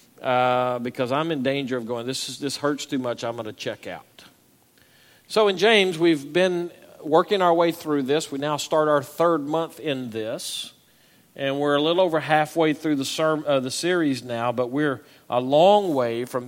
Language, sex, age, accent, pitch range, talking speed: English, male, 50-69, American, 135-175 Hz, 200 wpm